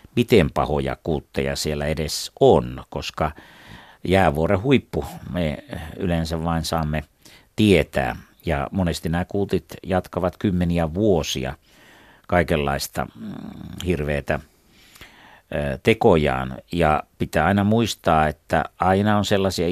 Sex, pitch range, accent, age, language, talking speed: male, 80-100 Hz, native, 60-79, Finnish, 95 wpm